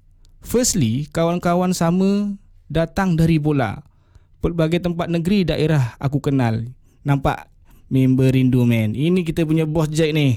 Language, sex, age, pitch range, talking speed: Malay, male, 20-39, 130-200 Hz, 125 wpm